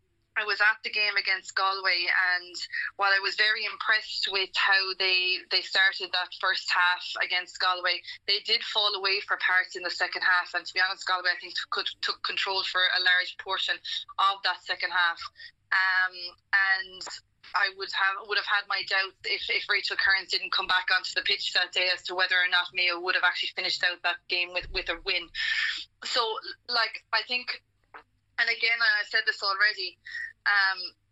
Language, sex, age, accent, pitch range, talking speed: English, female, 20-39, Irish, 185-210 Hz, 195 wpm